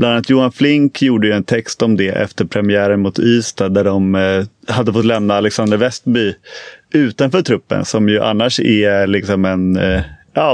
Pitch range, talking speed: 100-125 Hz, 165 wpm